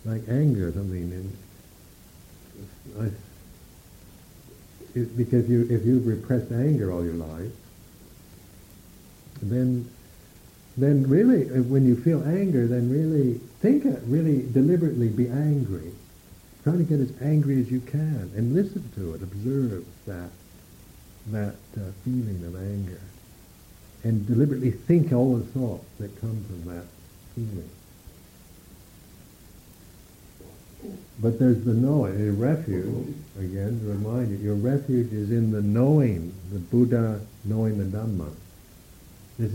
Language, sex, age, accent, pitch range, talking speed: English, male, 60-79, American, 90-120 Hz, 125 wpm